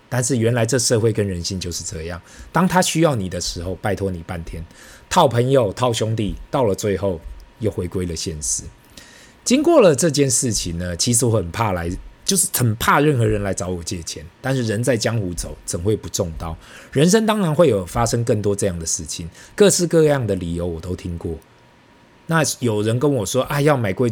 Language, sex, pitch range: Chinese, male, 90-135 Hz